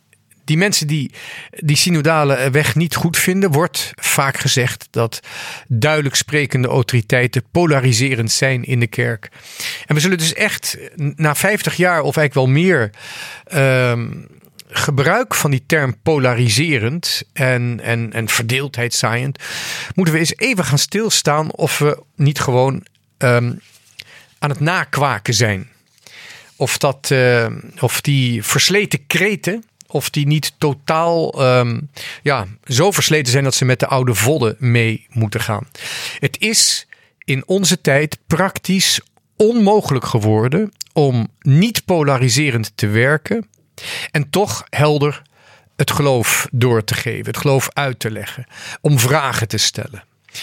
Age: 40-59